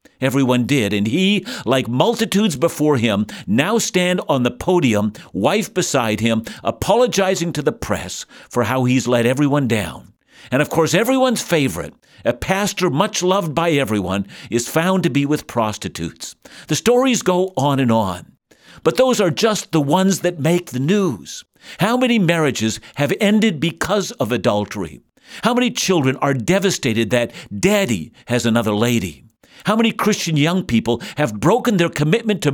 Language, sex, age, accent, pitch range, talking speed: English, male, 60-79, American, 120-190 Hz, 160 wpm